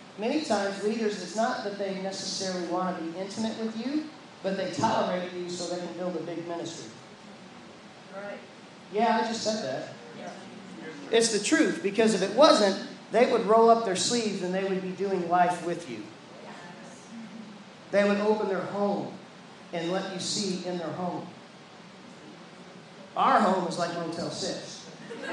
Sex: male